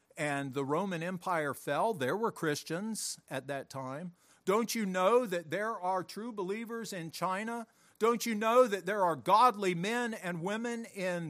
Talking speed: 170 wpm